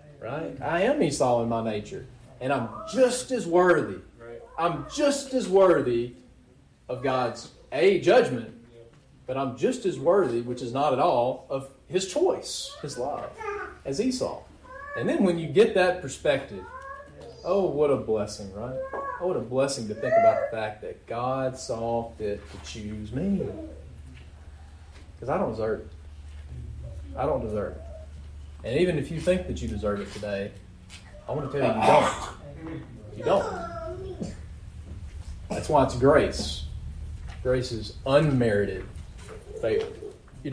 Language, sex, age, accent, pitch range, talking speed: English, male, 30-49, American, 100-155 Hz, 150 wpm